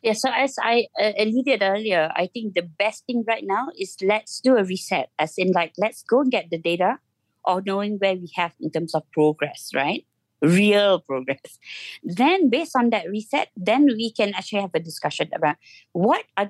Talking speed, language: 195 wpm, English